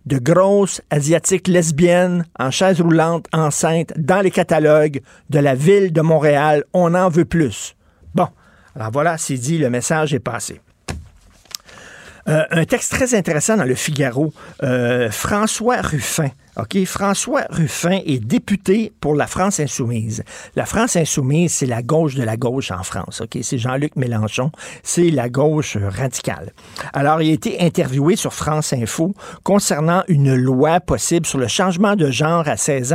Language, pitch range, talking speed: French, 135-175 Hz, 160 wpm